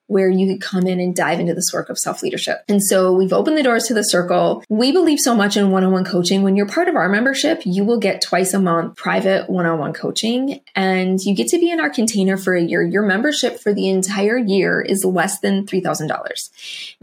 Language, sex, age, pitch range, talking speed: English, female, 20-39, 185-230 Hz, 225 wpm